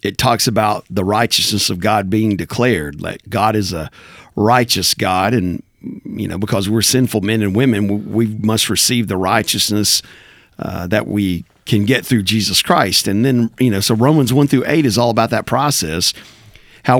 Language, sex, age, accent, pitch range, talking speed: English, male, 50-69, American, 110-140 Hz, 190 wpm